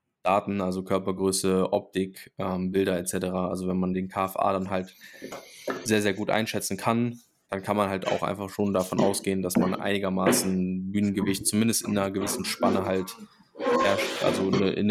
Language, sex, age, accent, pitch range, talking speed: German, male, 10-29, German, 95-105 Hz, 165 wpm